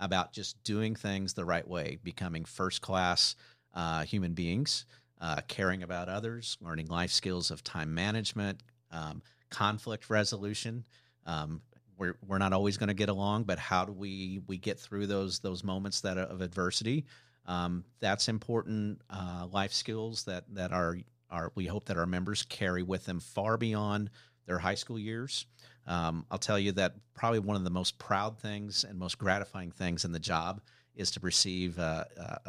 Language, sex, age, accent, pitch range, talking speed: English, male, 50-69, American, 90-105 Hz, 170 wpm